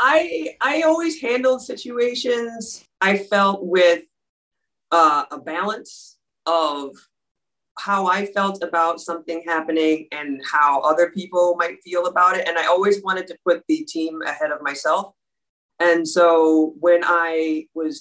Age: 30-49